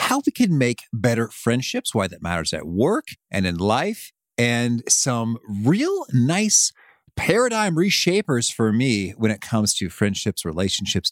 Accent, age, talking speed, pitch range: American, 40-59, 150 wpm, 105-170 Hz